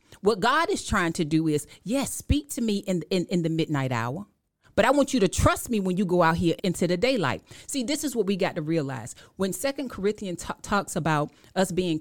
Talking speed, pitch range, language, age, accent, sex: 240 wpm, 150-195 Hz, English, 40-59, American, female